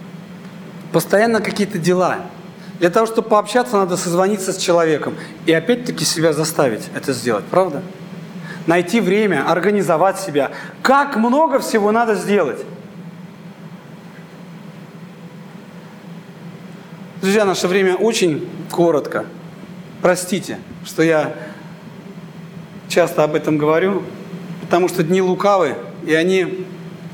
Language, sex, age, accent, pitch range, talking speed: Russian, male, 40-59, native, 170-190 Hz, 100 wpm